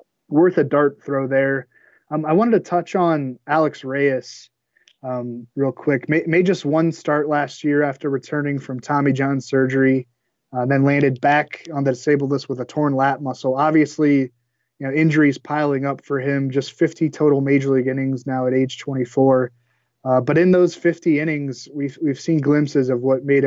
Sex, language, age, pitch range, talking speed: male, English, 20-39, 130-150 Hz, 185 wpm